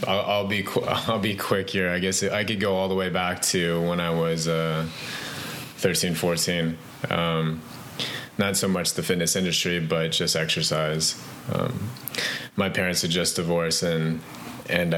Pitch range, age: 80-90 Hz, 20-39